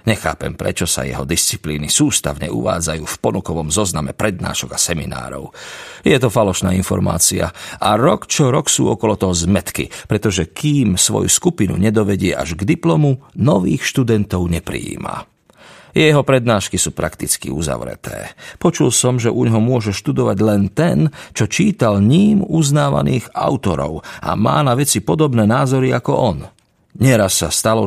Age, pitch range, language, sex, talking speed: 40-59, 90-130 Hz, Slovak, male, 140 wpm